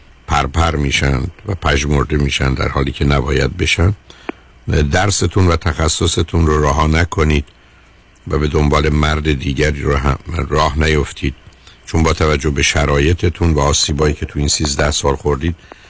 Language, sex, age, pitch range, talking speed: Persian, male, 50-69, 75-85 Hz, 155 wpm